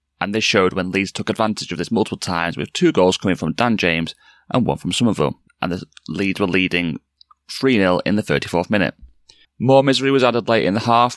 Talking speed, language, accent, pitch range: 215 wpm, English, British, 95-115 Hz